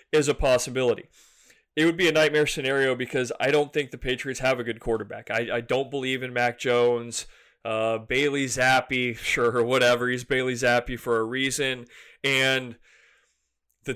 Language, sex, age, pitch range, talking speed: English, male, 20-39, 125-145 Hz, 170 wpm